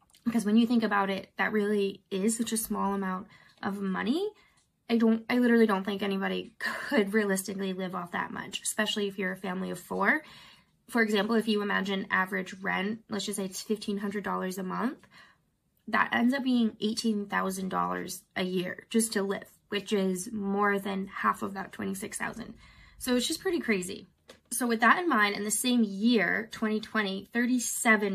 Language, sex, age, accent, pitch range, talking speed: English, female, 20-39, American, 195-230 Hz, 175 wpm